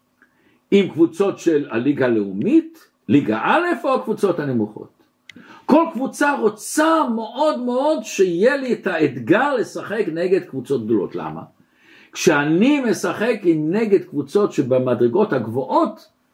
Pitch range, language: 190-265 Hz, Hebrew